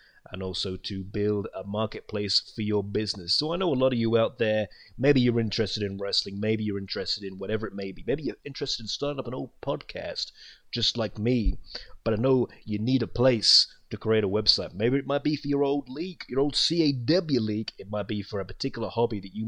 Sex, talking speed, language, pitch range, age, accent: male, 230 wpm, English, 100-120 Hz, 30-49, British